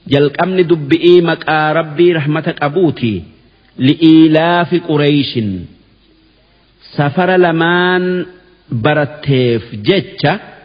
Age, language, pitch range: 50-69, Arabic, 130-175 Hz